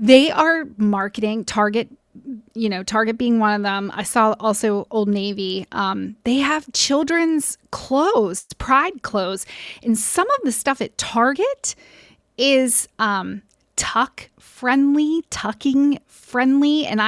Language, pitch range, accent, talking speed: English, 210-260 Hz, American, 130 wpm